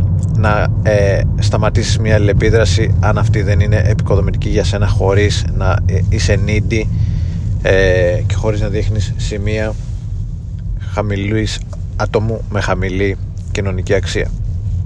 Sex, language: male, Greek